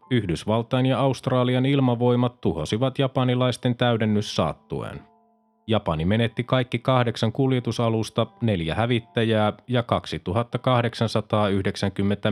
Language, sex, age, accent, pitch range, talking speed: Finnish, male, 30-49, native, 105-130 Hz, 85 wpm